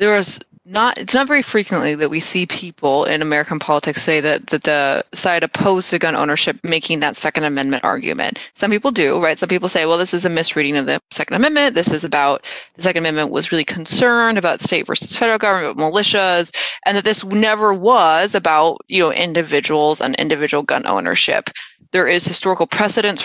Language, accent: English, American